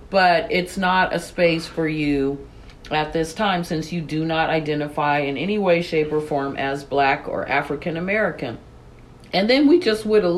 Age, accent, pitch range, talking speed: 50-69, American, 135-180 Hz, 180 wpm